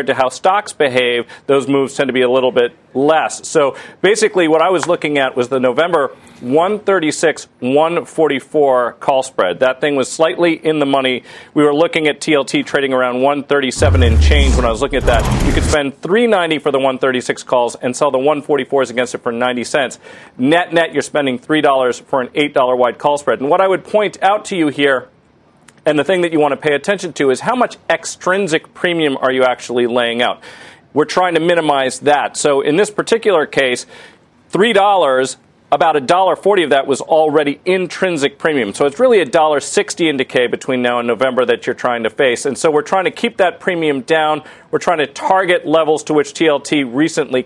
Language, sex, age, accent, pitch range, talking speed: English, male, 40-59, American, 130-170 Hz, 205 wpm